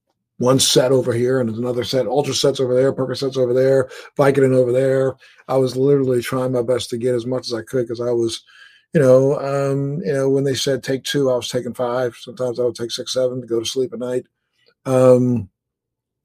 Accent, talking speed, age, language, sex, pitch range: American, 225 wpm, 50-69, English, male, 120-135 Hz